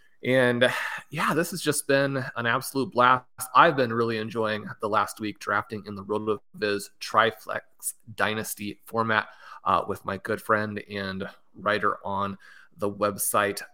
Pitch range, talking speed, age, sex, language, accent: 110-130 Hz, 145 wpm, 30-49, male, English, American